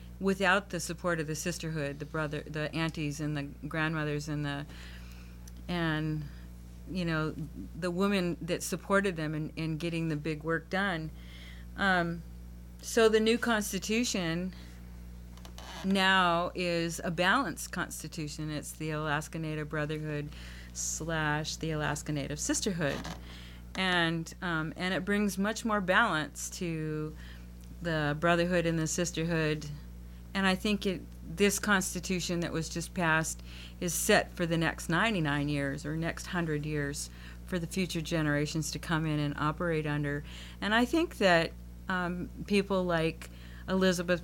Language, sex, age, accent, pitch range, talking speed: English, female, 40-59, American, 145-180 Hz, 140 wpm